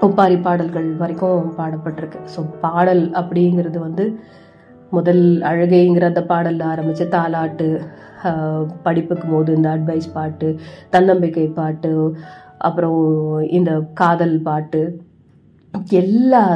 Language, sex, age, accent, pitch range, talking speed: Tamil, female, 30-49, native, 160-185 Hz, 95 wpm